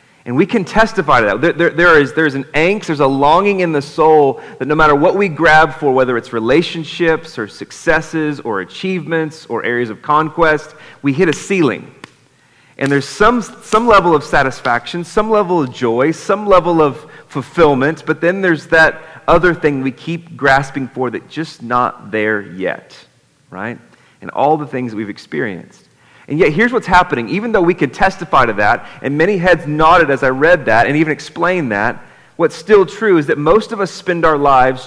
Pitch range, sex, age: 135-170 Hz, male, 30-49